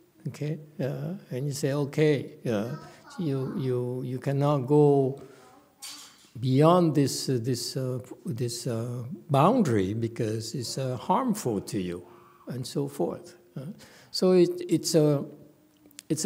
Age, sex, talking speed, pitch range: 60-79, male, 130 wpm, 110-150 Hz